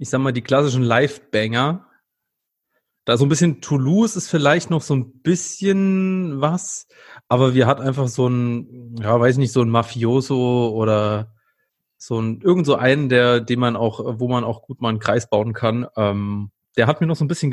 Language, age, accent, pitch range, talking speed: German, 30-49, German, 120-145 Hz, 195 wpm